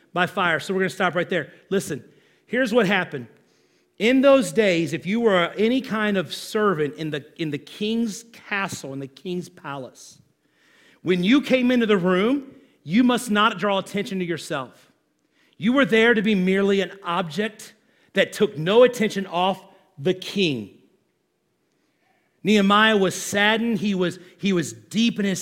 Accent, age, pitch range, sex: American, 40-59, 185-240 Hz, male